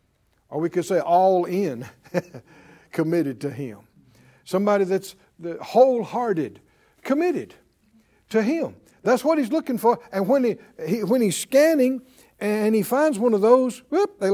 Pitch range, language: 190-265 Hz, English